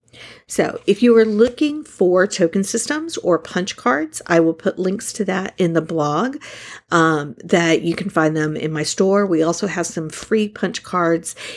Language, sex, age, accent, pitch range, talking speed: English, female, 50-69, American, 160-210 Hz, 185 wpm